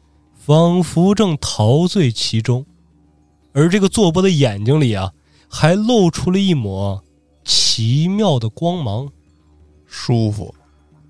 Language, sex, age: Chinese, male, 20-39